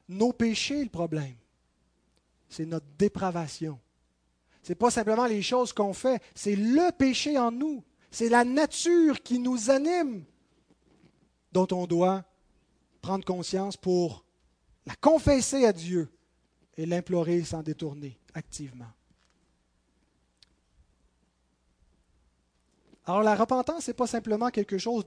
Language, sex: French, male